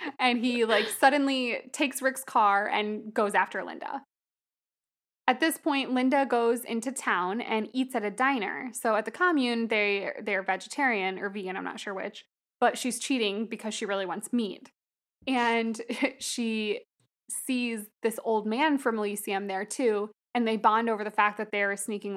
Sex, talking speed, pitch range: female, 175 wpm, 210-255 Hz